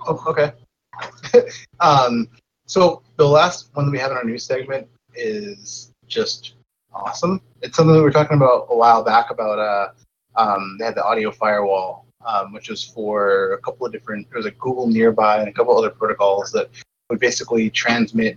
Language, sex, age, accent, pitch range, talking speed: English, male, 30-49, American, 110-140 Hz, 190 wpm